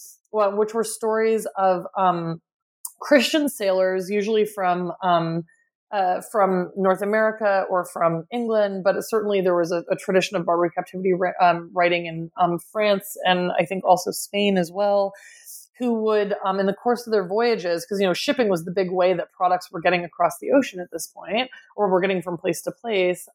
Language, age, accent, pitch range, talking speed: English, 20-39, American, 180-215 Hz, 195 wpm